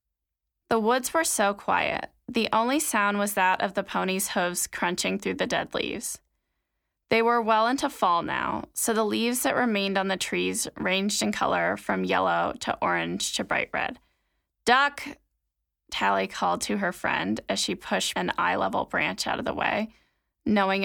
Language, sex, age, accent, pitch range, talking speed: English, female, 10-29, American, 150-240 Hz, 175 wpm